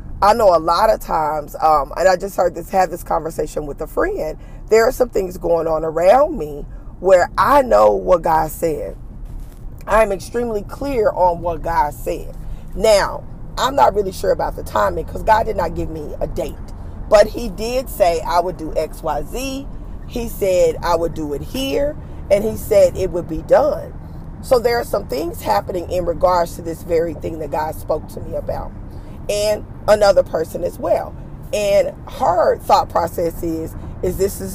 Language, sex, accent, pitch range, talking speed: English, female, American, 170-275 Hz, 195 wpm